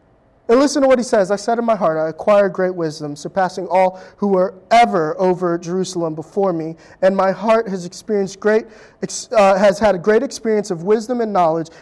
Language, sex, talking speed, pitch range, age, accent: English, male, 205 wpm, 155-195 Hz, 20-39, American